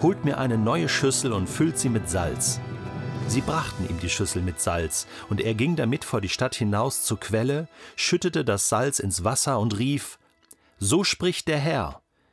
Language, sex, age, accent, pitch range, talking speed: German, male, 40-59, German, 100-135 Hz, 185 wpm